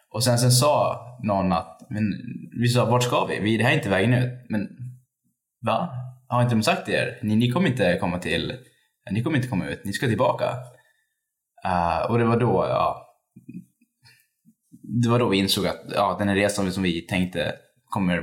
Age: 10-29